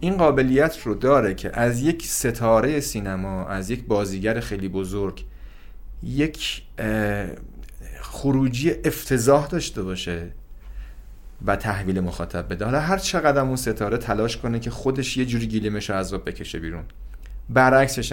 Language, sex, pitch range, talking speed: Persian, male, 100-140 Hz, 120 wpm